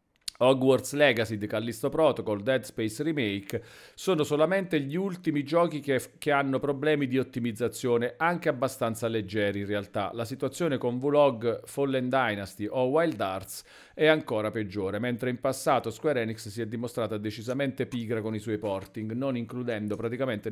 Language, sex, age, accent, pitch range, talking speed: Italian, male, 40-59, native, 110-140 Hz, 160 wpm